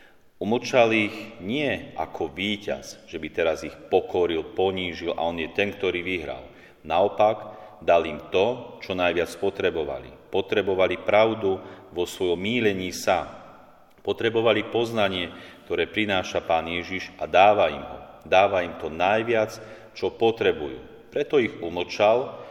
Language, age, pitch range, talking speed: Slovak, 40-59, 95-115 Hz, 130 wpm